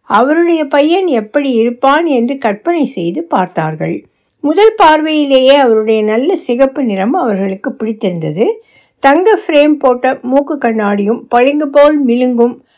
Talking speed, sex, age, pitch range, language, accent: 115 wpm, female, 60-79, 215-280 Hz, Tamil, native